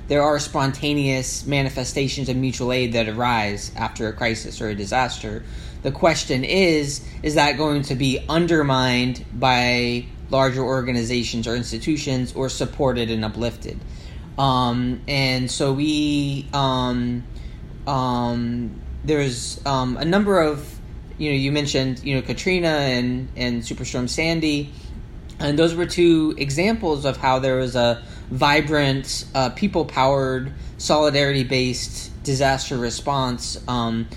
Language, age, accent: English, 20-39, American